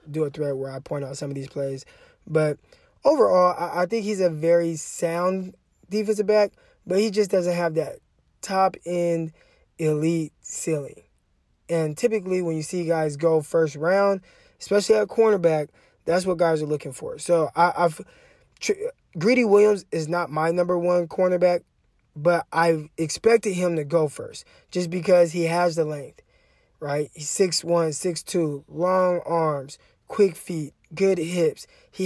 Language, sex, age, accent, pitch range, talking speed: English, male, 20-39, American, 155-190 Hz, 155 wpm